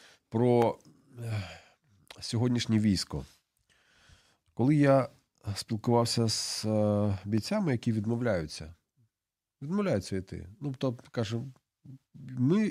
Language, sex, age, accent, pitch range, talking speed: Ukrainian, male, 40-59, native, 90-120 Hz, 65 wpm